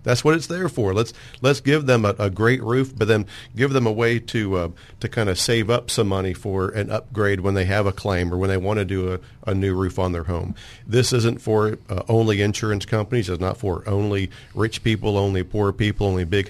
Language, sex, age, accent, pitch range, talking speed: English, male, 40-59, American, 95-115 Hz, 245 wpm